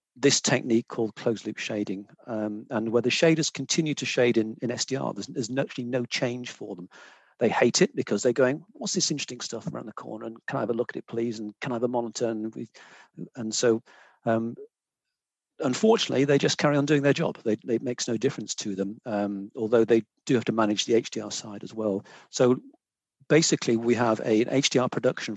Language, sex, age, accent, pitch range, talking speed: English, male, 40-59, British, 110-130 Hz, 215 wpm